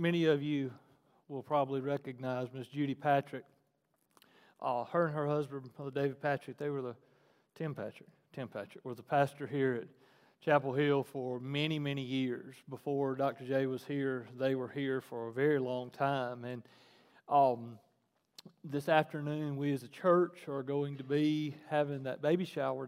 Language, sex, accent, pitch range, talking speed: English, male, American, 135-160 Hz, 170 wpm